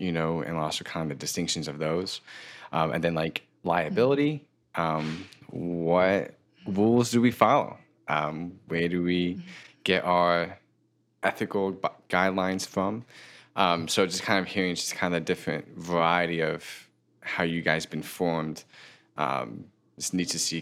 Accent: American